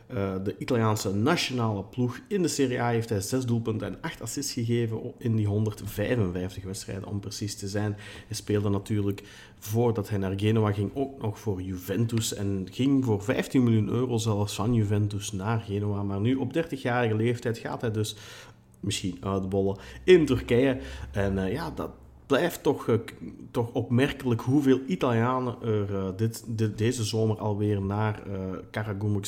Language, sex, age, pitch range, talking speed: Dutch, male, 40-59, 100-120 Hz, 170 wpm